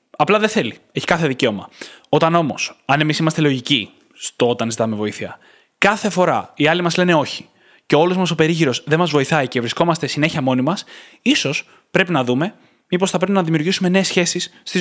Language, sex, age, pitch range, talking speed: Greek, male, 20-39, 145-190 Hz, 195 wpm